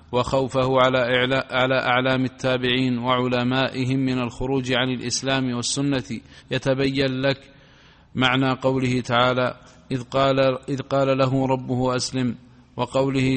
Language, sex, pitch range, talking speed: Arabic, male, 125-135 Hz, 110 wpm